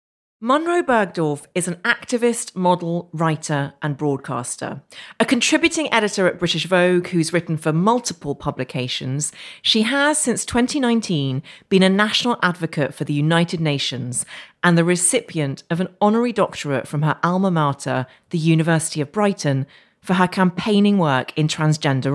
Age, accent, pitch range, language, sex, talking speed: 40-59, British, 155-205 Hz, English, female, 145 wpm